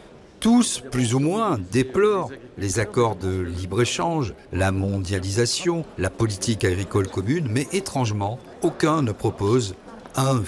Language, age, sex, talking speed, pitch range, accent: French, 50-69, male, 120 wpm, 100-130 Hz, French